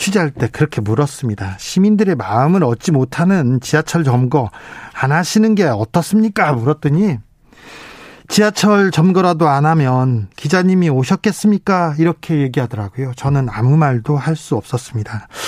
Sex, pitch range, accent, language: male, 135-180 Hz, native, Korean